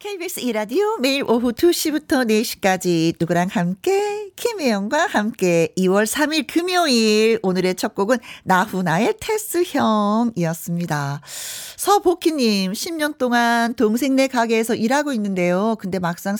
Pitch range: 175-245 Hz